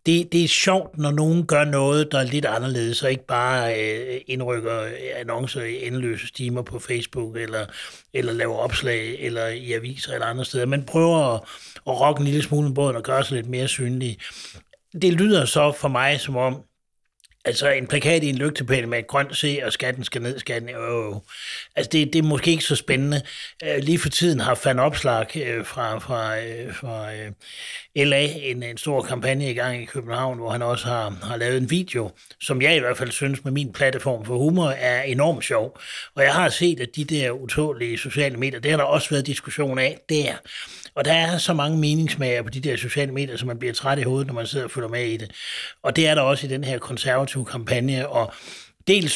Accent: native